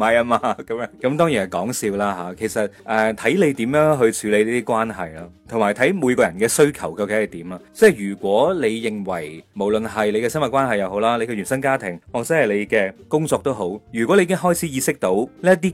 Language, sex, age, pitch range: Chinese, male, 30-49, 105-145 Hz